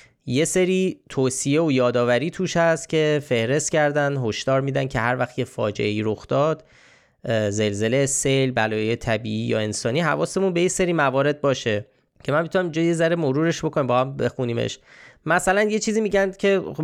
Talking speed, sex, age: 165 wpm, male, 20-39